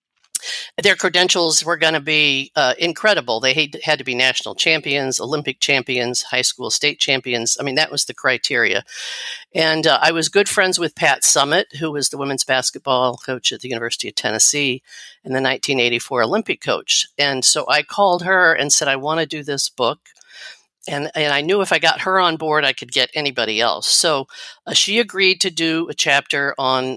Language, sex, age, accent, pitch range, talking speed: English, female, 50-69, American, 135-180 Hz, 195 wpm